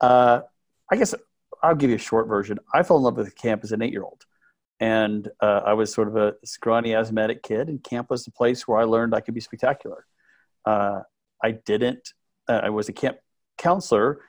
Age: 40-59